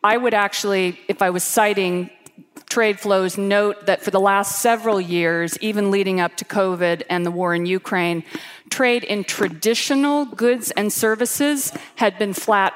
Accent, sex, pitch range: American, female, 180-220 Hz